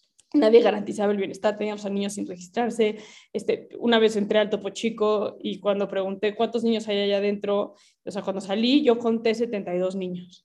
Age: 20-39